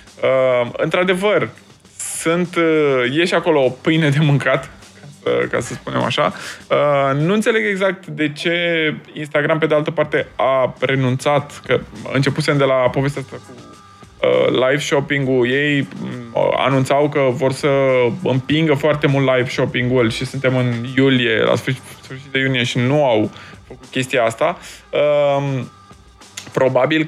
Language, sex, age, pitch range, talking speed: Romanian, male, 20-39, 125-155 Hz, 145 wpm